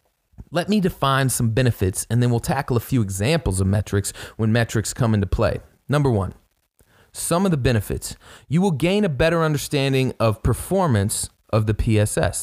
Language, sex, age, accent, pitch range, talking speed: English, male, 30-49, American, 105-140 Hz, 175 wpm